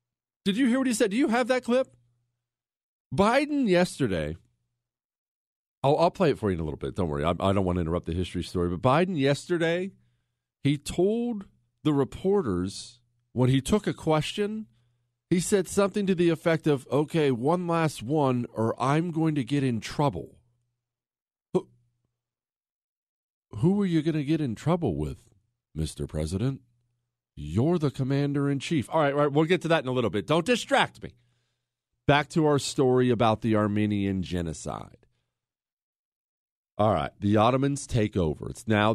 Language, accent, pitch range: English, American, 105-150 Hz